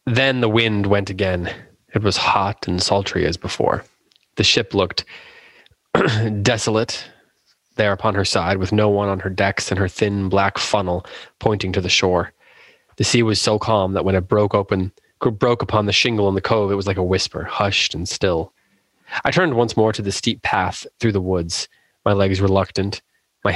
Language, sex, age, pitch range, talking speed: English, male, 20-39, 95-110 Hz, 190 wpm